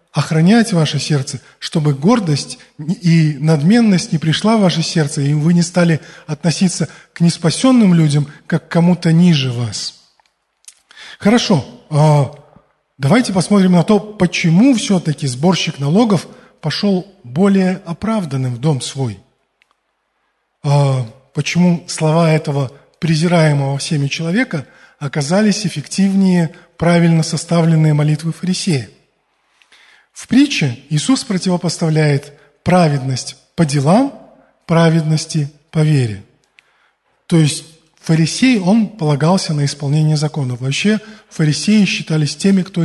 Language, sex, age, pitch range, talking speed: Russian, male, 20-39, 145-180 Hz, 105 wpm